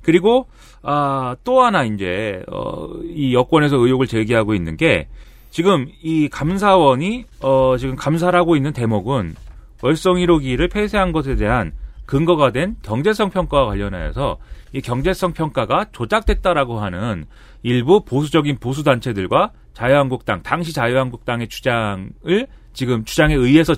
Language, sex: Korean, male